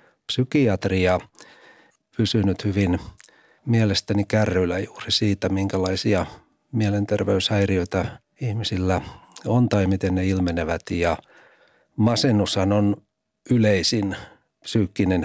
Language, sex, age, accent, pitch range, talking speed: Finnish, male, 60-79, native, 95-110 Hz, 85 wpm